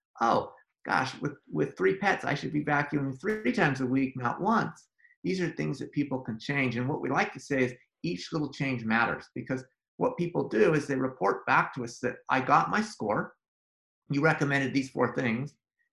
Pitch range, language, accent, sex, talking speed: 130-160 Hz, English, American, male, 205 wpm